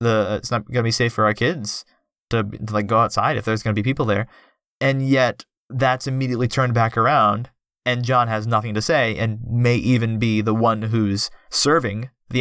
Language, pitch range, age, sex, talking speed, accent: English, 105-125 Hz, 20-39, male, 215 wpm, American